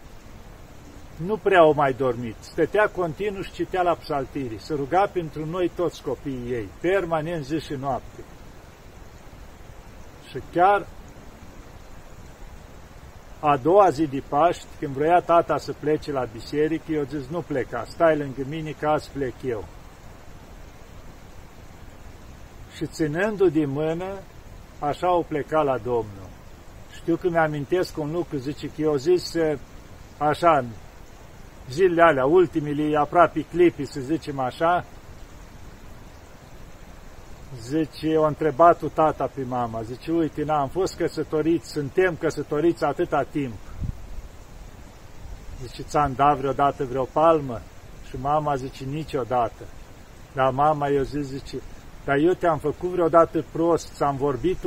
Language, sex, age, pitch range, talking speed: Romanian, male, 50-69, 125-165 Hz, 125 wpm